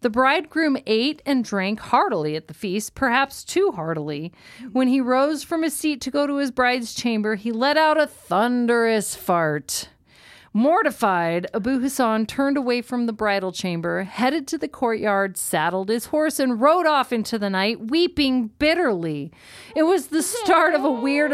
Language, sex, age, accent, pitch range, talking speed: English, female, 40-59, American, 210-280 Hz, 170 wpm